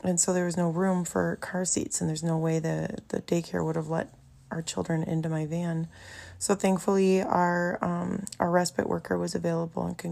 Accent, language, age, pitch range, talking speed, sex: American, English, 20-39, 165-185 Hz, 210 wpm, female